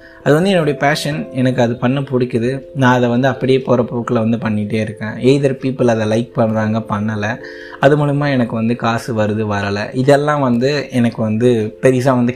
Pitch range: 110-130 Hz